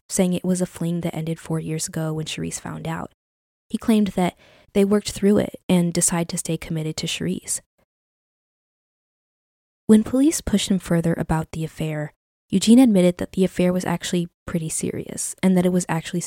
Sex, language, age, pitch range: female, English, 20-39, 160-200 Hz